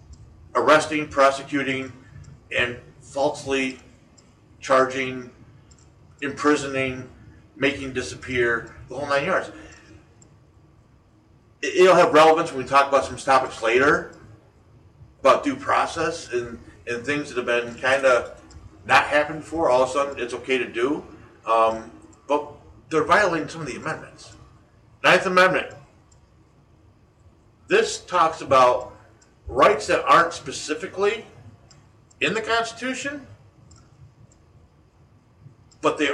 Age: 50-69